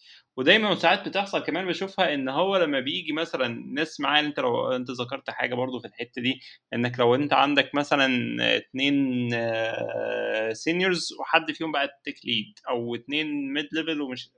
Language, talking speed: Arabic, 160 wpm